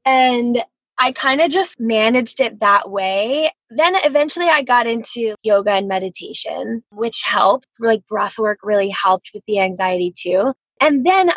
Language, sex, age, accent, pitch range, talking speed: English, female, 10-29, American, 205-255 Hz, 160 wpm